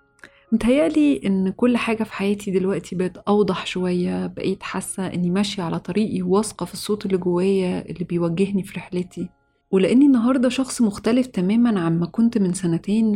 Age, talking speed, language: 30-49, 155 wpm, Arabic